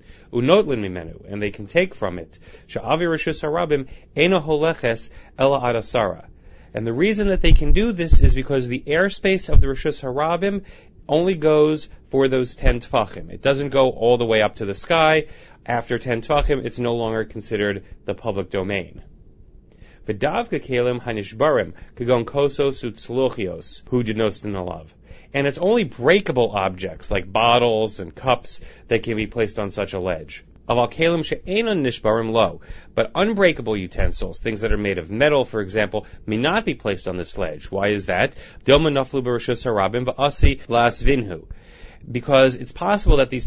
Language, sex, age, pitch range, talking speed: English, male, 30-49, 105-140 Hz, 135 wpm